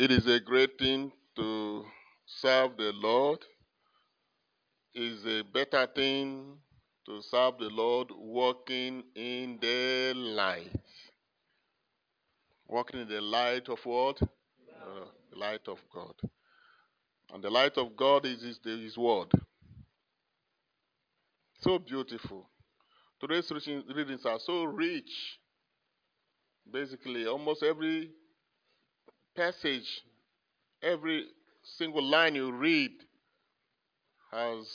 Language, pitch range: English, 120-165 Hz